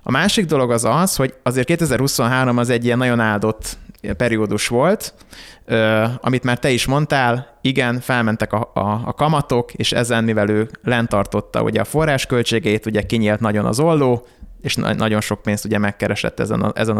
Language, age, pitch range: Hungarian, 20-39, 110-130 Hz